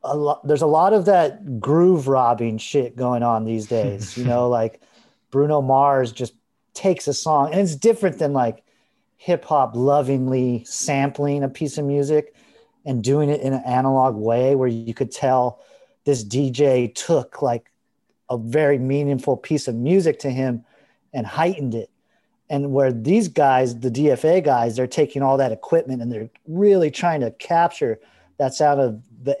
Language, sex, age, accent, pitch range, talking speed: English, male, 40-59, American, 125-160 Hz, 170 wpm